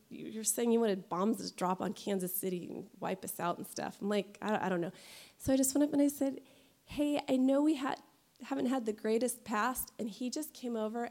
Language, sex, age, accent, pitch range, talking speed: English, female, 30-49, American, 205-255 Hz, 240 wpm